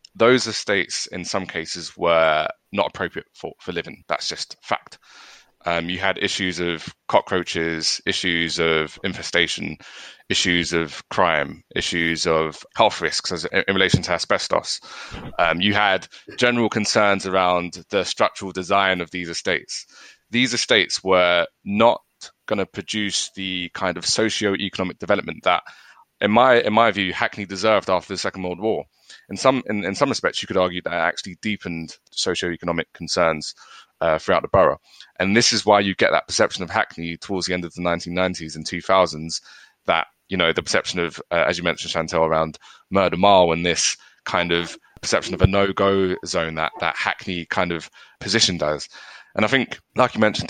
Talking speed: 170 wpm